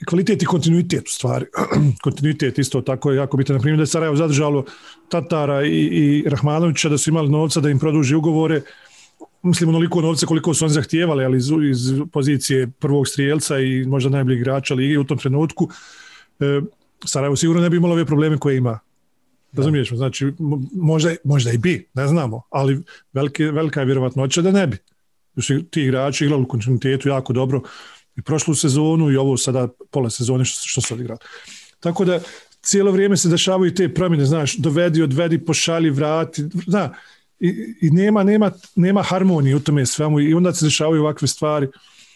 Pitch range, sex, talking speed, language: 140-165 Hz, male, 170 wpm, English